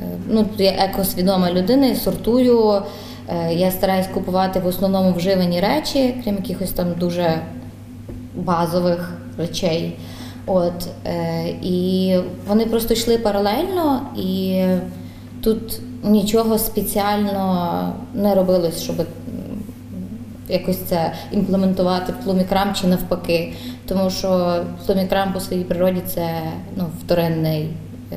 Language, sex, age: Ukrainian, female, 20-39